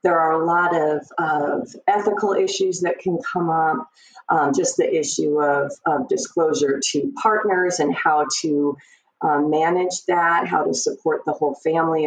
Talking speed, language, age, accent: 165 wpm, English, 30-49, American